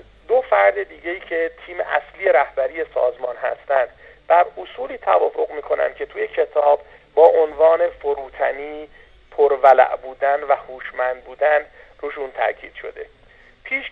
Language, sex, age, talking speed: Persian, male, 50-69, 125 wpm